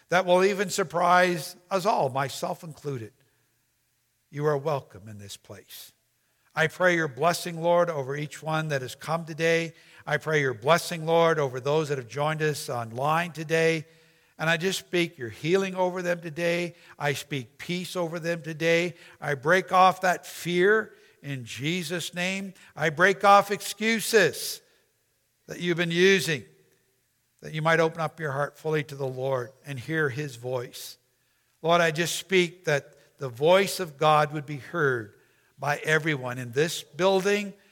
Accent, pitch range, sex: American, 135-175 Hz, male